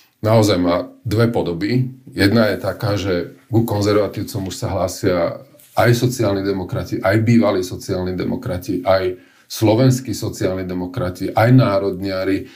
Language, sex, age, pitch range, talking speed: Slovak, male, 40-59, 95-115 Hz, 125 wpm